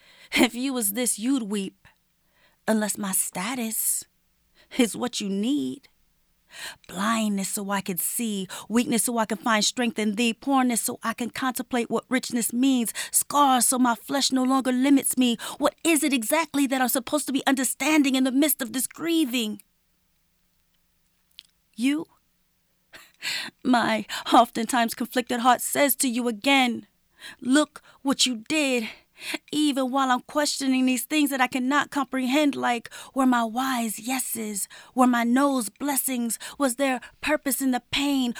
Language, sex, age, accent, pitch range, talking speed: English, female, 30-49, American, 235-275 Hz, 150 wpm